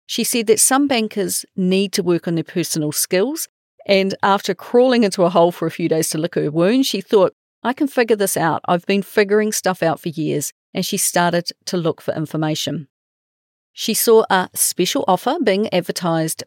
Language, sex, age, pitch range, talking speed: English, female, 40-59, 165-215 Hz, 195 wpm